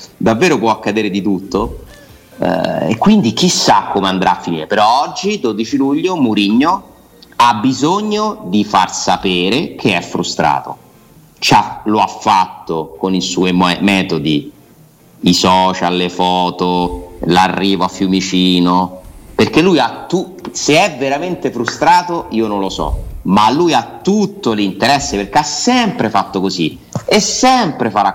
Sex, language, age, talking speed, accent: male, Italian, 30-49, 145 wpm, native